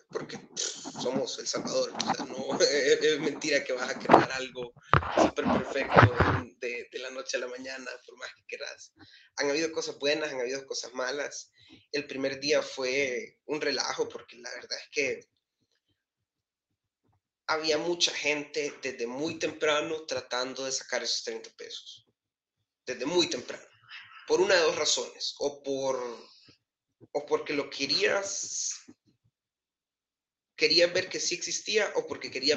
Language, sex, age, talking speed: Spanish, male, 30-49, 145 wpm